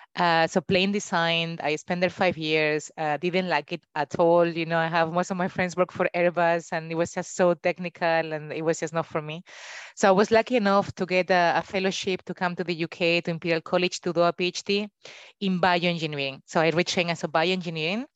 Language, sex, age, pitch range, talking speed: English, female, 20-39, 160-185 Hz, 230 wpm